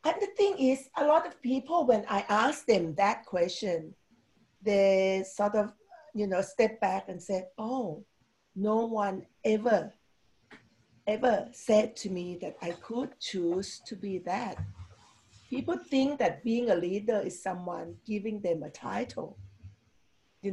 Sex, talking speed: female, 150 wpm